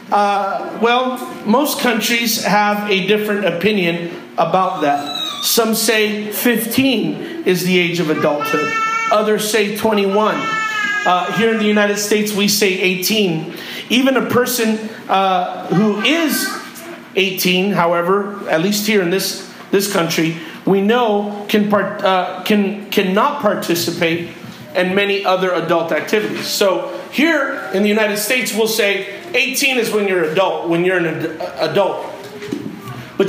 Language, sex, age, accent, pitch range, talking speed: English, male, 40-59, American, 185-225 Hz, 140 wpm